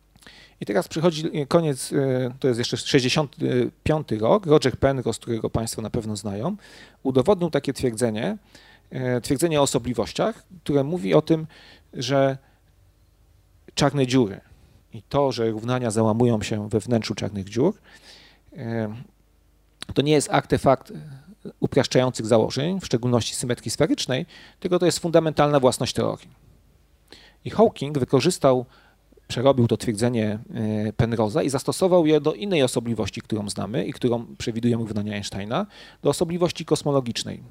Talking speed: 125 wpm